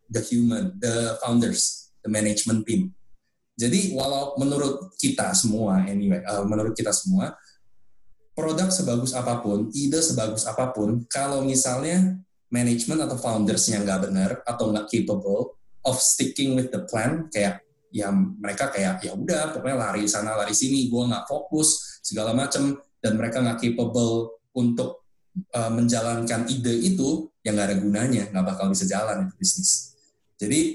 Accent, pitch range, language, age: native, 110-160 Hz, Indonesian, 20-39